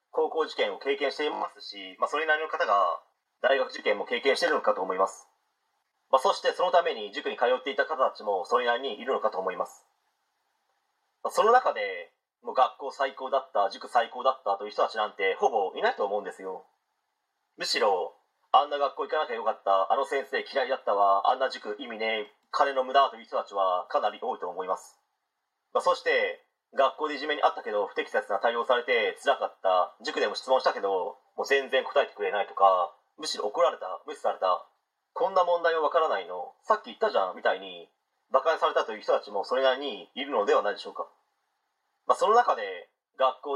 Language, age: Japanese, 30-49